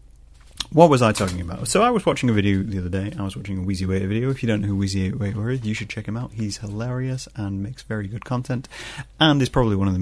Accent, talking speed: British, 280 wpm